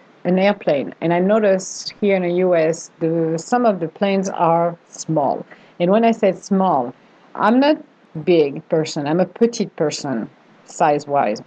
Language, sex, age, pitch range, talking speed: English, female, 50-69, 165-195 Hz, 160 wpm